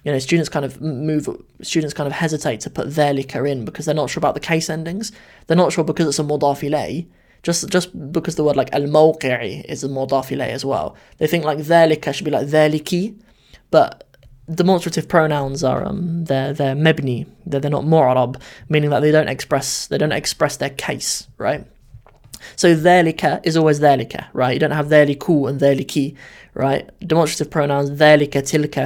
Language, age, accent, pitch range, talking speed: English, 20-39, British, 135-160 Hz, 195 wpm